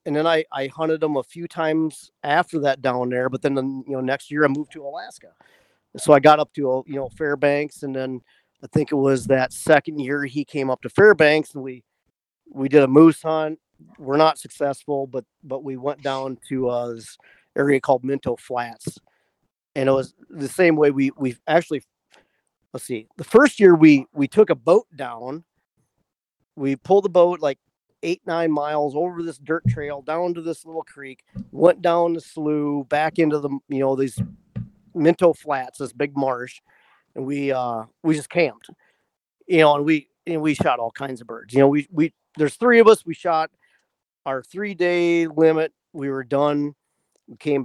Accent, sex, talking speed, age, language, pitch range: American, male, 195 wpm, 40-59, English, 135-160 Hz